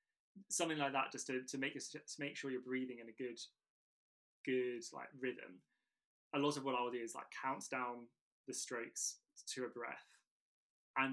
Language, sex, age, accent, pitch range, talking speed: English, male, 20-39, British, 125-140 Hz, 185 wpm